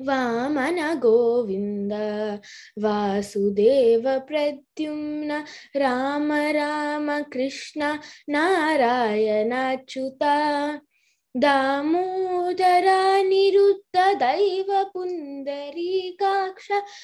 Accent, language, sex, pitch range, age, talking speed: native, Telugu, female, 245-335 Hz, 20-39, 35 wpm